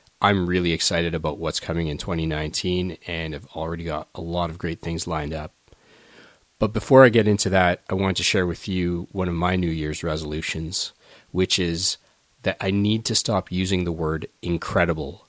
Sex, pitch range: male, 90-110 Hz